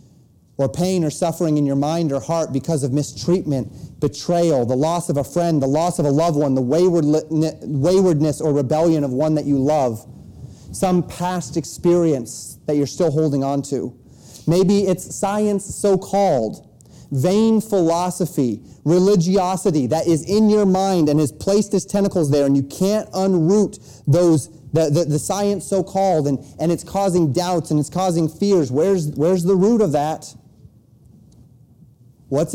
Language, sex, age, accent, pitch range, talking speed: English, male, 30-49, American, 135-175 Hz, 160 wpm